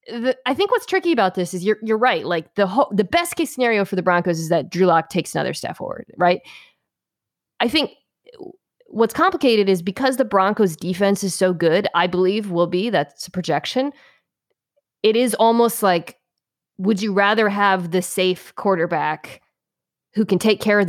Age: 20-39